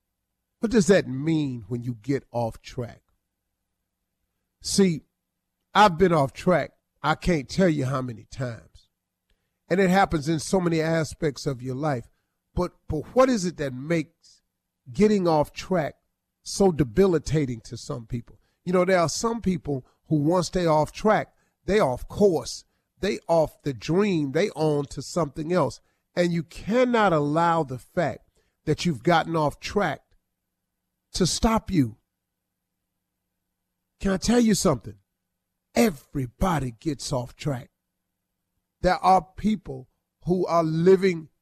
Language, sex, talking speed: English, male, 140 wpm